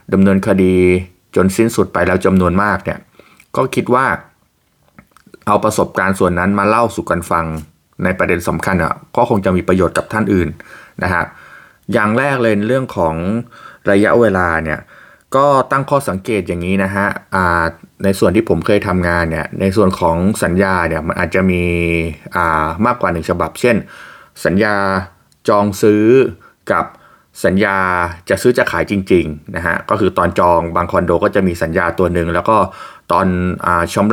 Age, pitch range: 20-39, 85-105 Hz